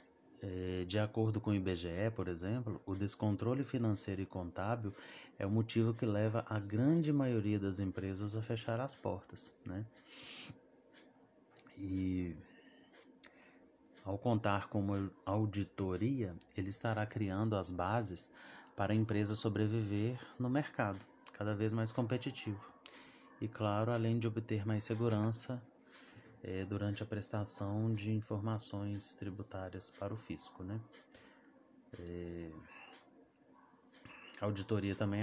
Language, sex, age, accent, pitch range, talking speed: Portuguese, male, 30-49, Brazilian, 100-115 Hz, 120 wpm